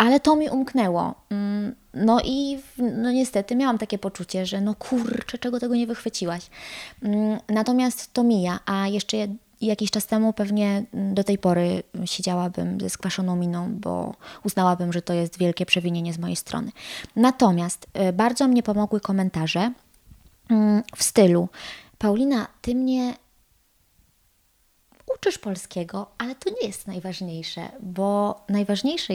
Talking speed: 130 wpm